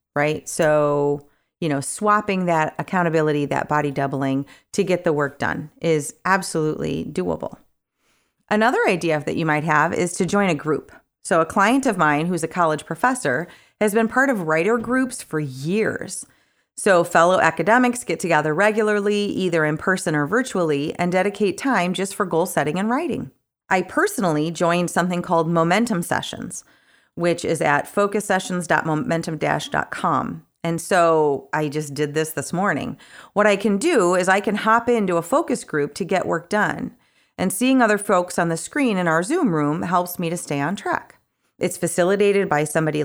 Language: English